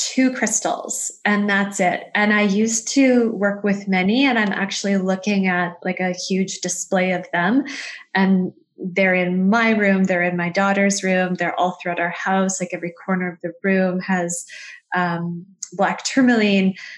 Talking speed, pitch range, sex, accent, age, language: 170 wpm, 185-215 Hz, female, American, 20-39, English